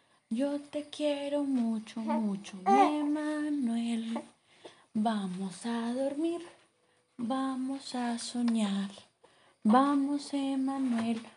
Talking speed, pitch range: 80 wpm, 220-280 Hz